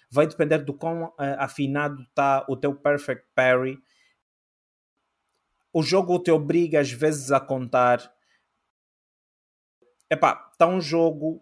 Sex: male